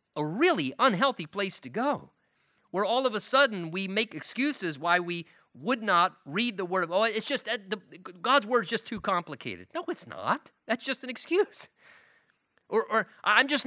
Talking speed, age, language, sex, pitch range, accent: 195 wpm, 40-59, English, male, 165-235 Hz, American